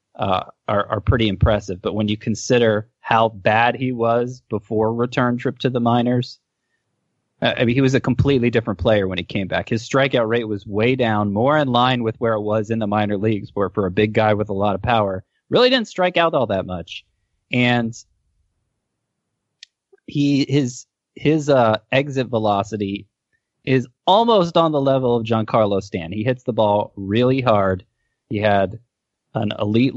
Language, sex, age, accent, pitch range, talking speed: English, male, 20-39, American, 105-125 Hz, 180 wpm